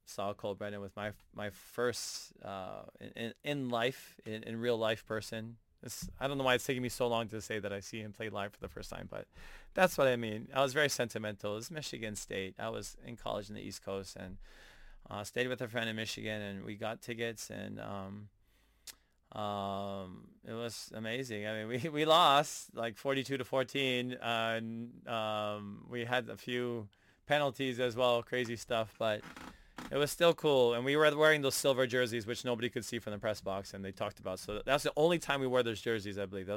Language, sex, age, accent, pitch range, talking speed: English, male, 20-39, American, 105-125 Hz, 215 wpm